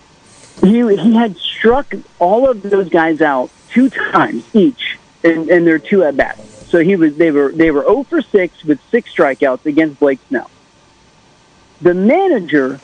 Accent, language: American, English